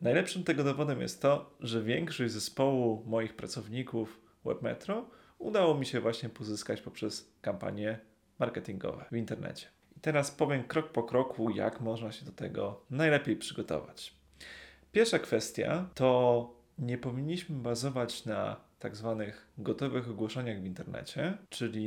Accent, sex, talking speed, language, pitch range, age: native, male, 130 wpm, Polish, 115-140 Hz, 30-49